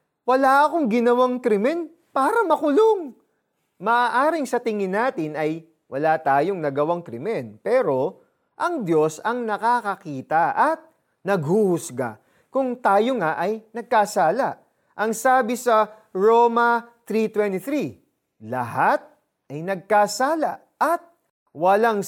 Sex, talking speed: male, 100 wpm